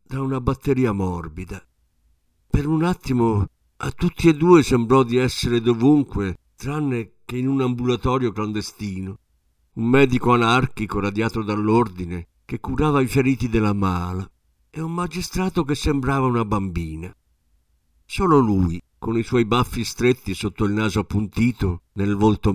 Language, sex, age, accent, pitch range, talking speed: Italian, male, 50-69, native, 90-130 Hz, 140 wpm